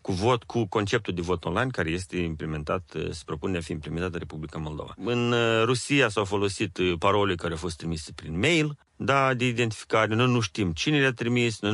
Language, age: Romanian, 40-59